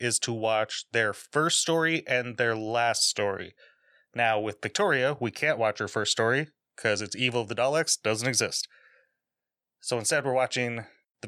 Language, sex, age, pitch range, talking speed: English, male, 30-49, 110-135 Hz, 170 wpm